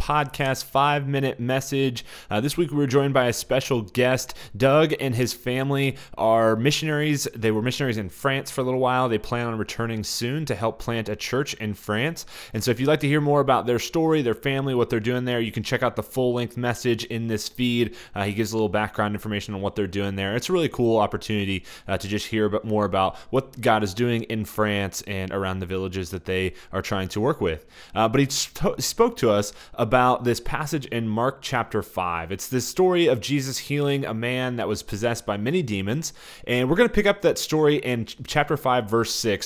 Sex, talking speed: male, 225 wpm